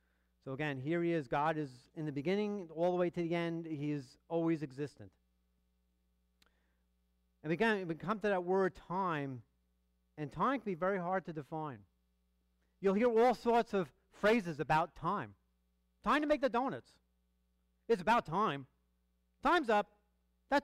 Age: 40-59